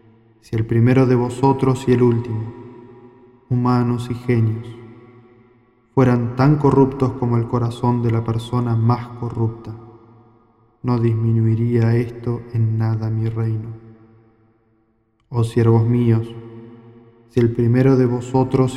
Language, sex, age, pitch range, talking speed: Spanish, male, 20-39, 115-125 Hz, 120 wpm